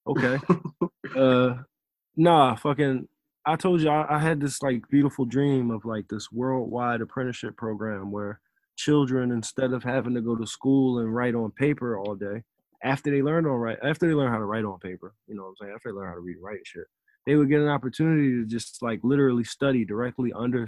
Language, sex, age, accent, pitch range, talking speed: English, male, 20-39, American, 105-130 Hz, 215 wpm